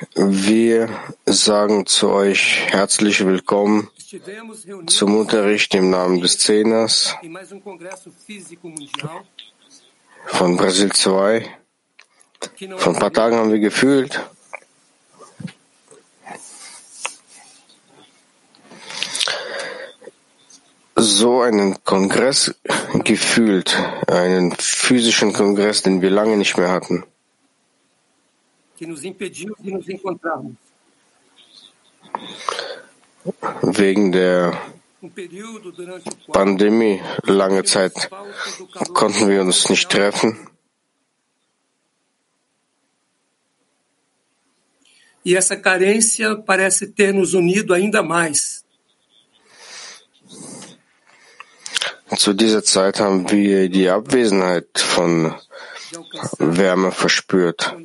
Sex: male